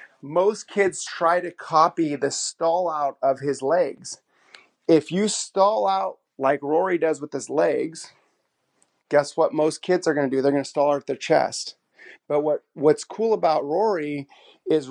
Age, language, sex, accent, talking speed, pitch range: 30-49, English, male, American, 170 wpm, 140-165 Hz